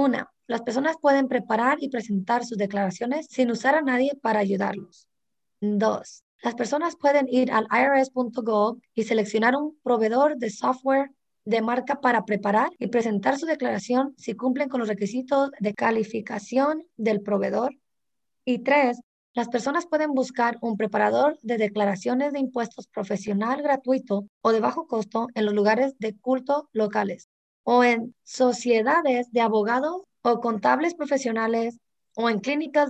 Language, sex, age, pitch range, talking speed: English, female, 20-39, 220-270 Hz, 145 wpm